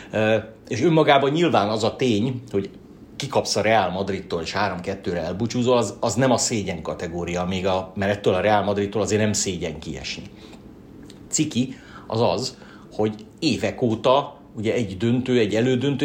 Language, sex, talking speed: Hungarian, male, 160 wpm